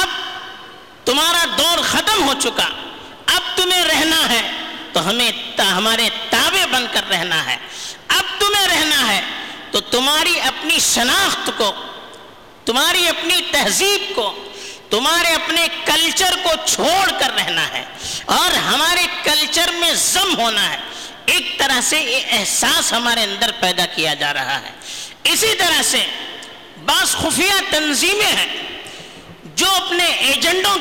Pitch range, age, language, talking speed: 245-350 Hz, 50-69, Urdu, 130 wpm